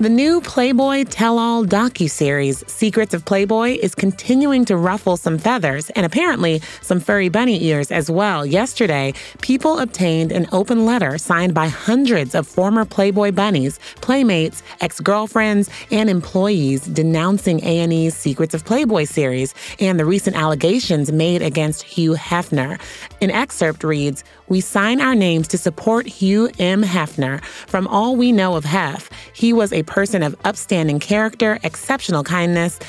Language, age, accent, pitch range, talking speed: English, 30-49, American, 160-215 Hz, 150 wpm